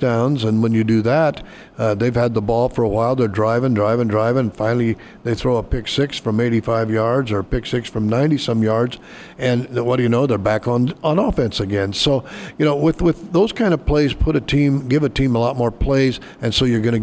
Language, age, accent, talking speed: English, 60-79, American, 245 wpm